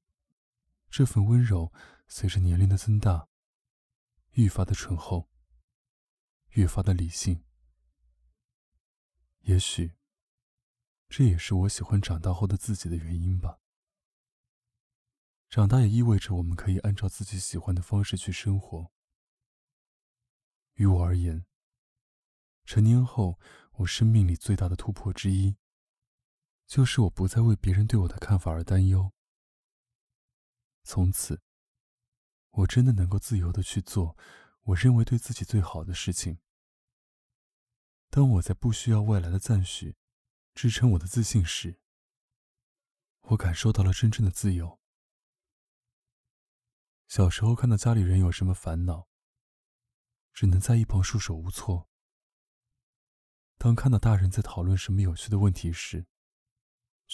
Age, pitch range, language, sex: 20-39, 90-115 Hz, Chinese, male